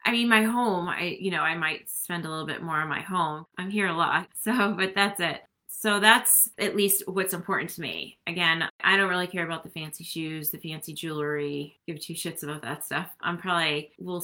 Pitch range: 160-190 Hz